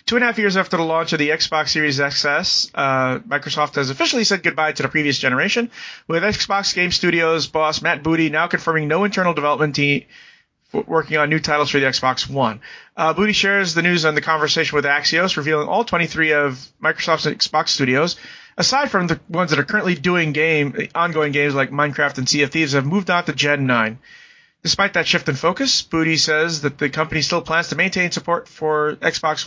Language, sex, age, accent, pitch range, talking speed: English, male, 30-49, American, 145-180 Hz, 210 wpm